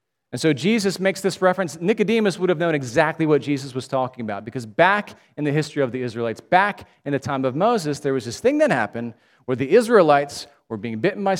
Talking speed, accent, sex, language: 225 wpm, American, male, English